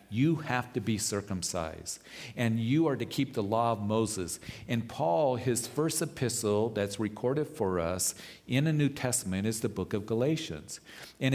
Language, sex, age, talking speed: English, male, 50-69, 175 wpm